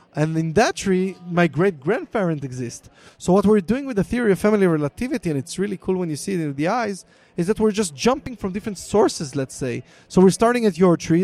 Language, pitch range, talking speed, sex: English, 150-200 Hz, 235 wpm, male